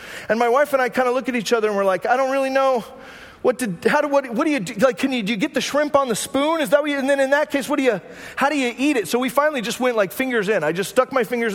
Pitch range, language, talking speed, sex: 185-265 Hz, English, 355 wpm, male